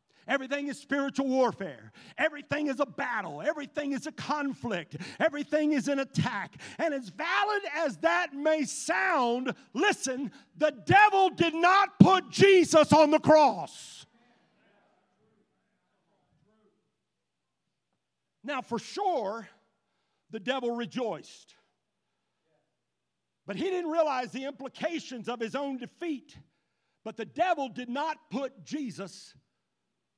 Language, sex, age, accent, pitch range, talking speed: English, male, 50-69, American, 185-285 Hz, 115 wpm